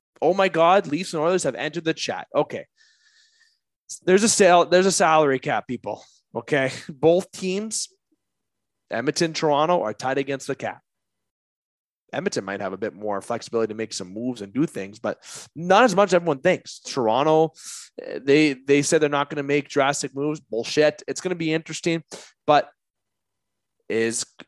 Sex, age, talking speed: male, 20-39, 170 wpm